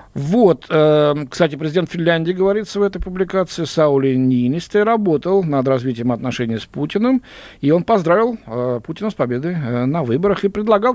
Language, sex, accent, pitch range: Russian, male, native, 130-185 Hz